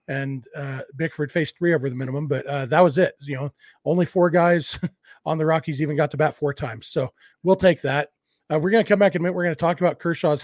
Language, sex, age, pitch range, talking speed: English, male, 40-59, 150-185 Hz, 265 wpm